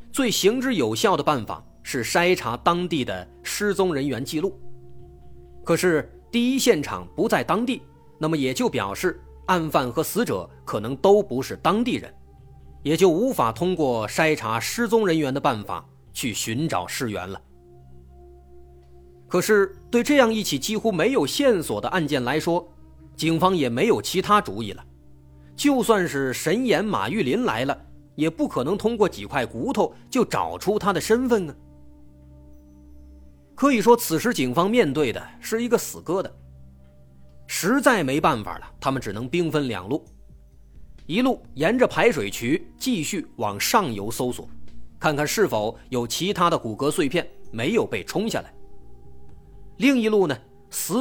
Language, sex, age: Chinese, male, 30-49